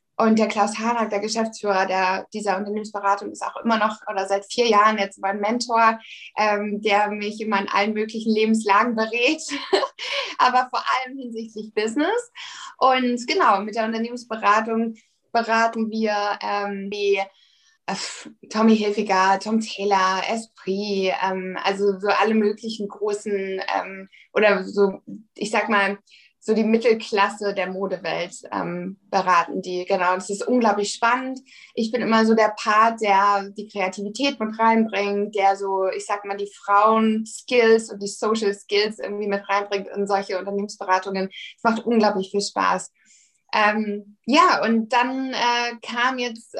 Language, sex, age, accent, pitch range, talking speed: German, female, 20-39, German, 200-225 Hz, 145 wpm